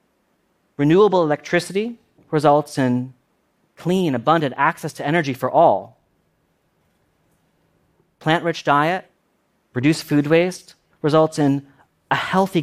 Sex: male